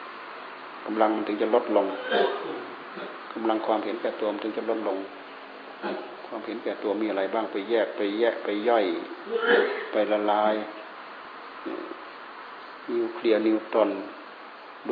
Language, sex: Thai, male